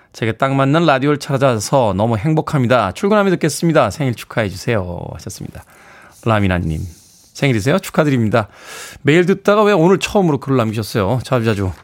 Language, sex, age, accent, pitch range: Korean, male, 20-39, native, 115-180 Hz